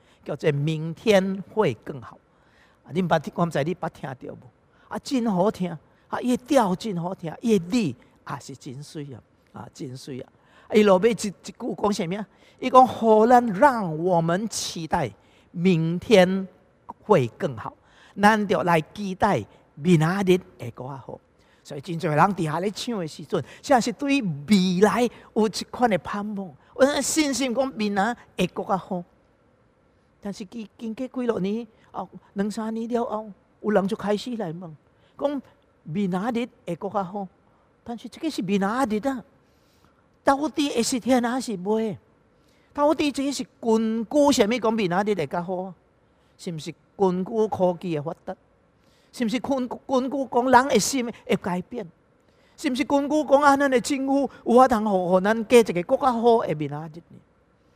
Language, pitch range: English, 175-240 Hz